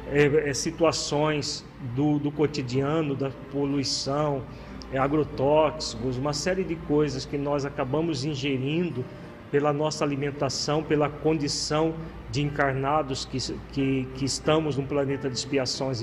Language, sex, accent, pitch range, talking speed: Portuguese, male, Brazilian, 135-165 Hz, 110 wpm